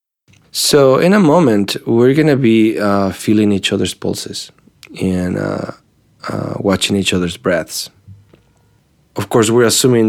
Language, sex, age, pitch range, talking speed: English, male, 20-39, 95-110 Hz, 145 wpm